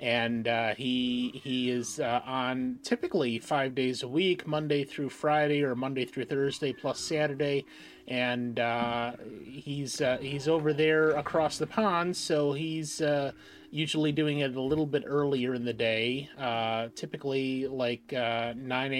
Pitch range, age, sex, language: 120-145 Hz, 30-49, male, English